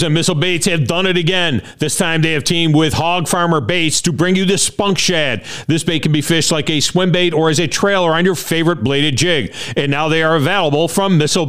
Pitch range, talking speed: 150-190 Hz, 245 wpm